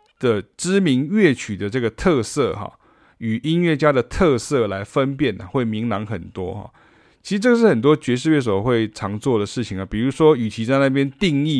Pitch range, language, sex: 105-140 Hz, Chinese, male